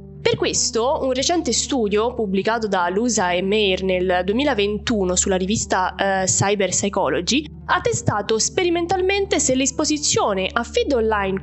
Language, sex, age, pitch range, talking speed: Italian, female, 20-39, 195-285 Hz, 130 wpm